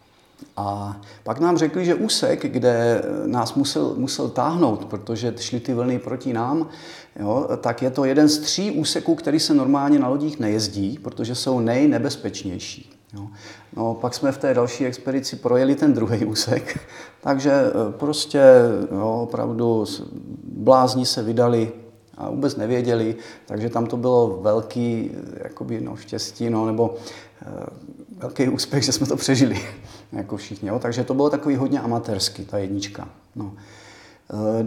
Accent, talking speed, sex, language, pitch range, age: native, 145 wpm, male, Czech, 105-130 Hz, 40-59